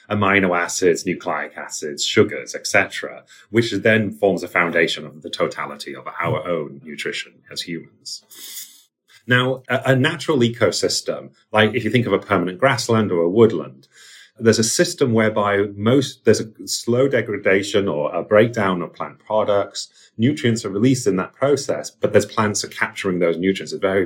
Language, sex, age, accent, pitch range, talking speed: English, male, 30-49, British, 95-125 Hz, 165 wpm